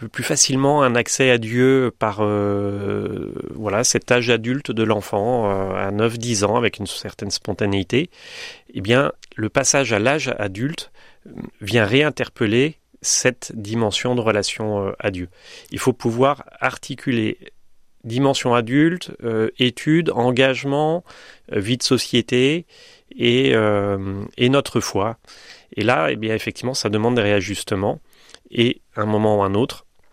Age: 30-49